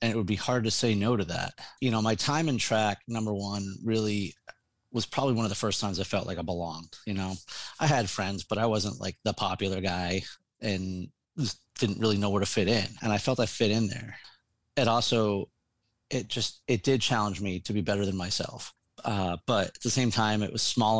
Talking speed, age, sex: 230 wpm, 30-49, male